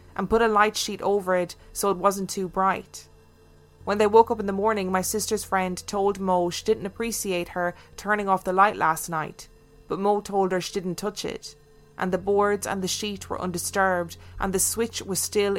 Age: 20-39